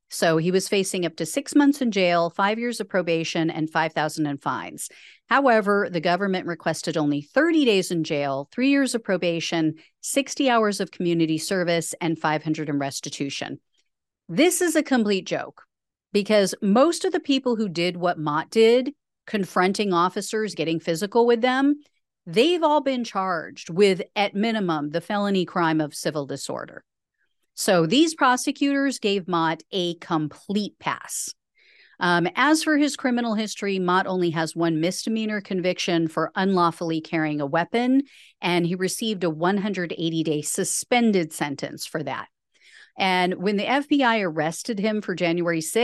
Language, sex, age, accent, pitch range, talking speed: English, female, 40-59, American, 165-225 Hz, 150 wpm